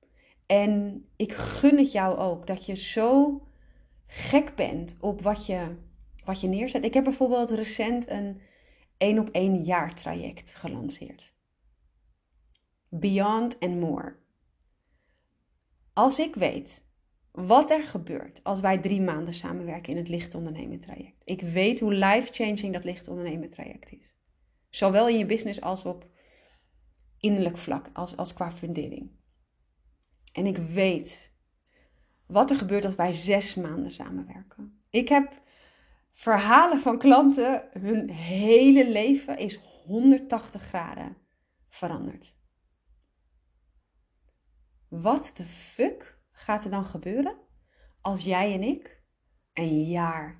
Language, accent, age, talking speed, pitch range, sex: Dutch, Dutch, 30-49, 120 wpm, 165-225 Hz, female